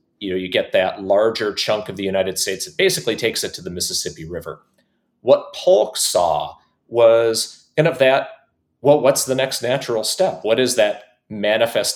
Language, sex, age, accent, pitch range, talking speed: English, male, 40-59, American, 95-130 Hz, 180 wpm